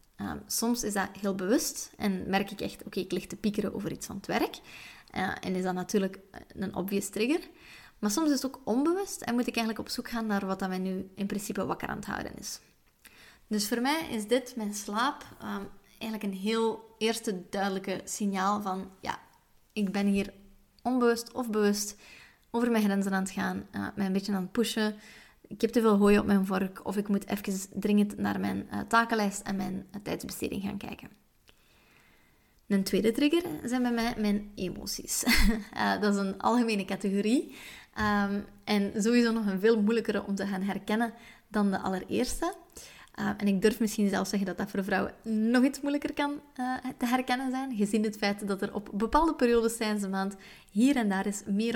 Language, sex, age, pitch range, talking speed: Dutch, female, 20-39, 195-235 Hz, 195 wpm